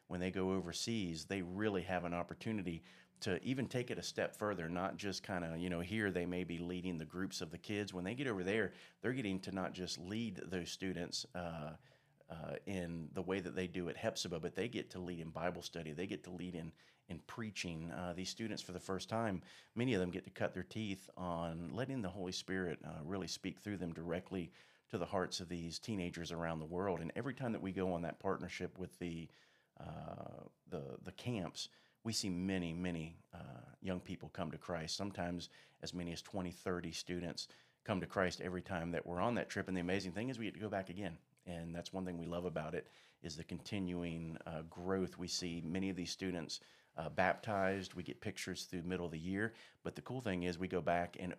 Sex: male